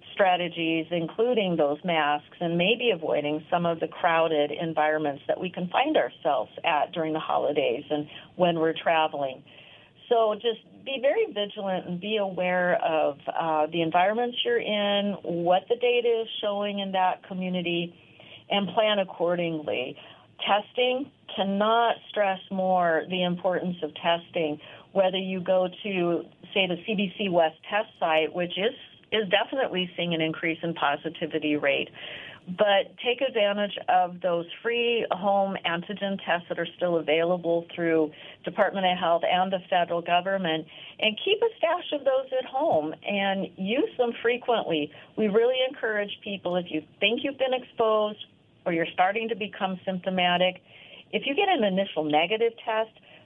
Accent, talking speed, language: American, 150 wpm, English